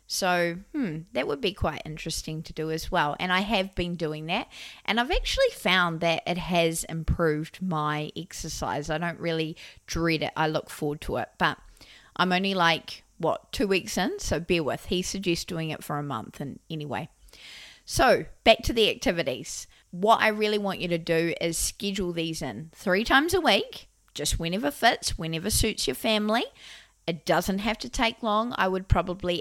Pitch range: 160-200 Hz